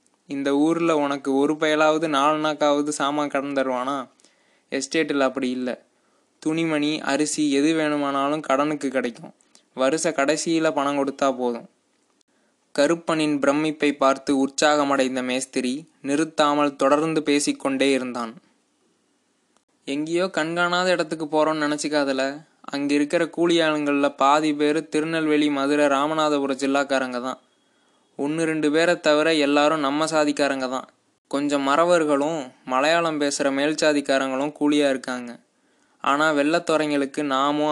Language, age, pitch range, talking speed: Tamil, 20-39, 140-155 Hz, 105 wpm